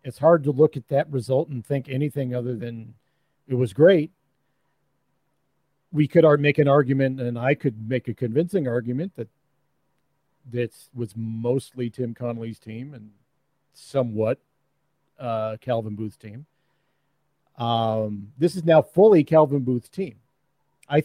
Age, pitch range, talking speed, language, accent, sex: 50-69, 125-155 Hz, 140 wpm, English, American, male